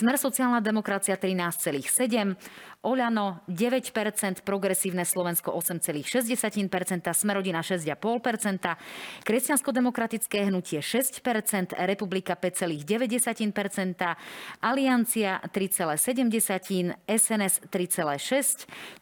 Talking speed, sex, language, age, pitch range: 65 wpm, female, Slovak, 30-49, 180-225 Hz